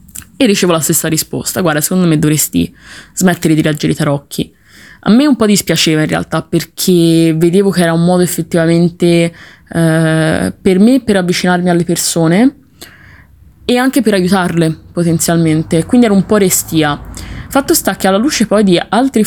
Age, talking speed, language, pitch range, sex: 20-39, 165 wpm, Italian, 165-220 Hz, female